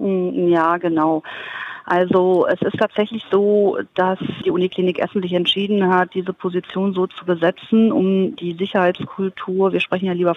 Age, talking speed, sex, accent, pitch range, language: 40-59, 150 wpm, female, German, 175-200 Hz, German